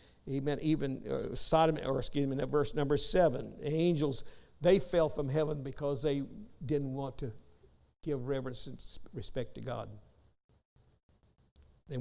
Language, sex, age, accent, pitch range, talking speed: English, male, 60-79, American, 130-165 Hz, 150 wpm